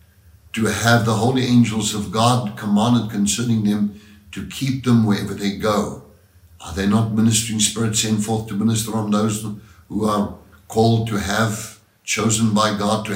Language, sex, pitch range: English, male, 110-145 Hz